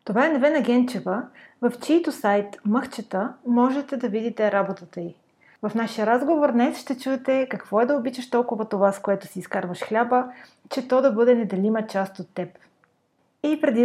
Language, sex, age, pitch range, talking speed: Bulgarian, female, 30-49, 205-270 Hz, 175 wpm